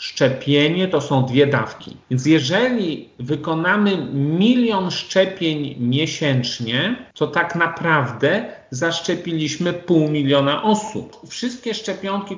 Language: Polish